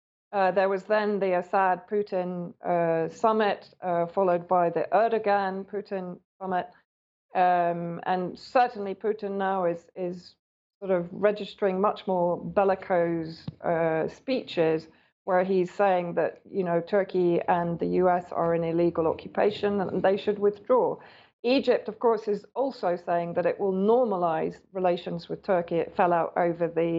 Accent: British